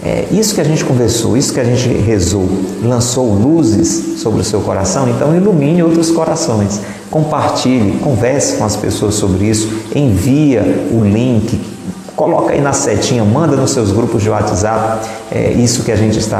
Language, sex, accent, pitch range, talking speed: Portuguese, male, Brazilian, 100-125 Hz, 170 wpm